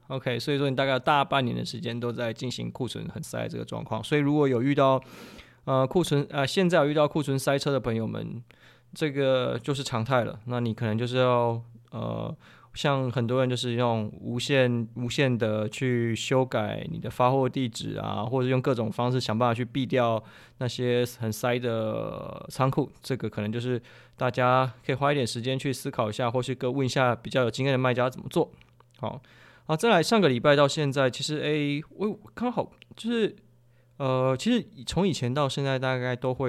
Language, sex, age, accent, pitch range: Chinese, male, 20-39, native, 120-145 Hz